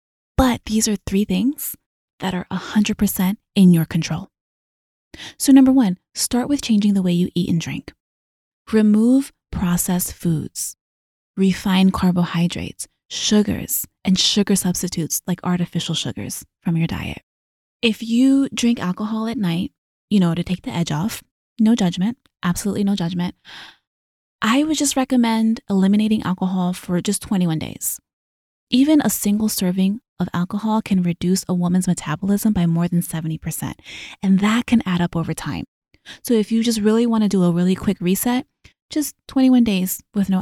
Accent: American